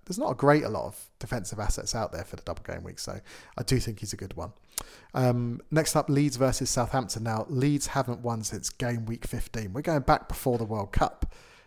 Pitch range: 110-135 Hz